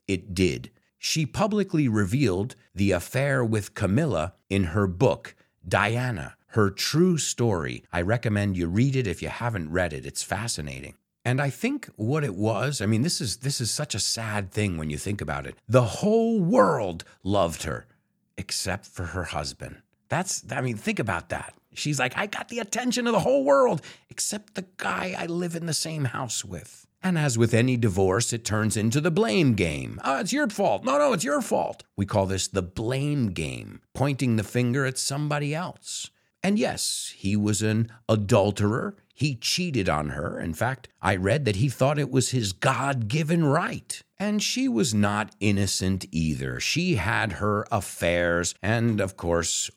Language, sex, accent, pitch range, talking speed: English, male, American, 95-145 Hz, 185 wpm